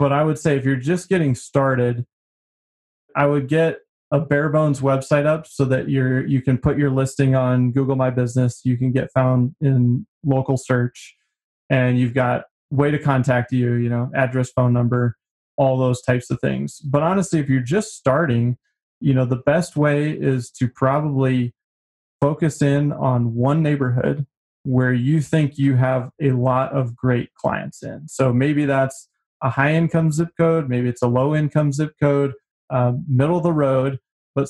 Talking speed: 175 wpm